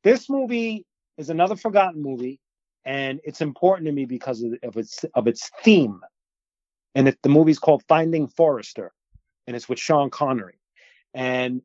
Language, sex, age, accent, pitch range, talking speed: English, male, 30-49, American, 120-155 Hz, 165 wpm